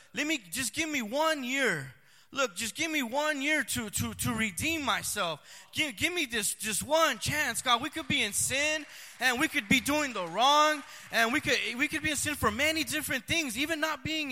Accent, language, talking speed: American, English, 220 wpm